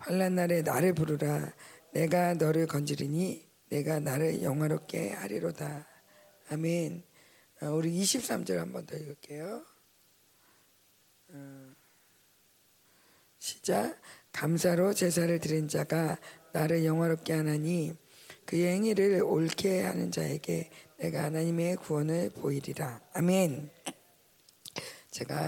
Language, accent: Korean, native